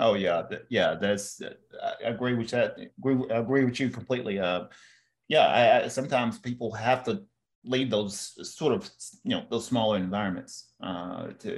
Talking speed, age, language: 155 wpm, 30-49, English